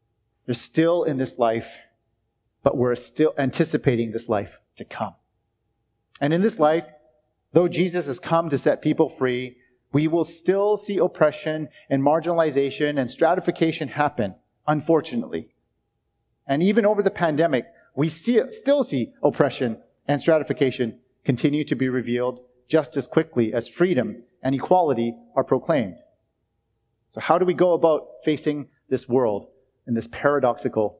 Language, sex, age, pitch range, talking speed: English, male, 30-49, 115-155 Hz, 140 wpm